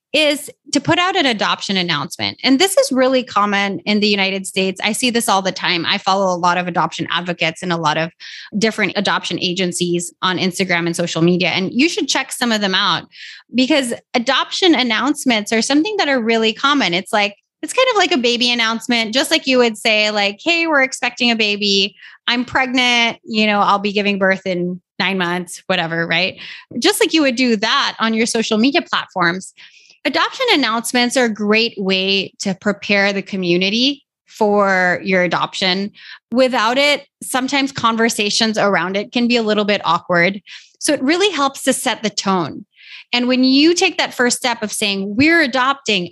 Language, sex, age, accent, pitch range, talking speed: English, female, 20-39, American, 195-265 Hz, 190 wpm